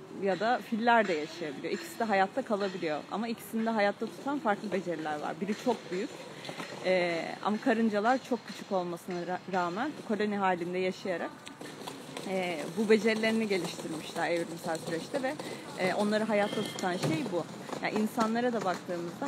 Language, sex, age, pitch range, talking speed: Turkish, female, 30-49, 180-225 Hz, 135 wpm